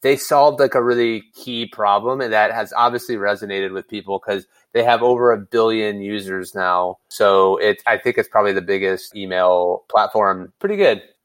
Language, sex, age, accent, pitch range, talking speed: English, male, 30-49, American, 100-120 Hz, 175 wpm